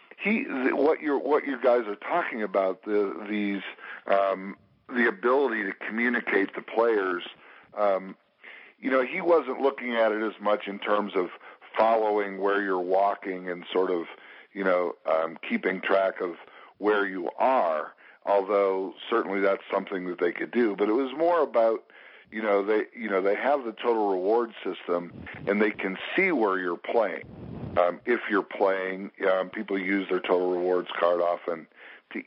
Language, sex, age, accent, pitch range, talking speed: English, male, 50-69, American, 90-120 Hz, 170 wpm